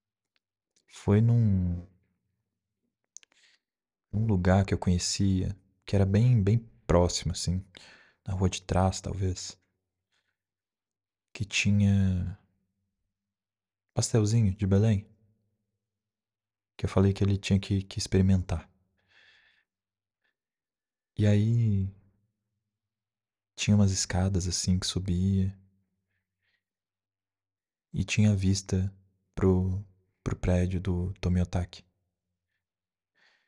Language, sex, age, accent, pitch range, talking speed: Portuguese, male, 20-39, Brazilian, 95-105 Hz, 85 wpm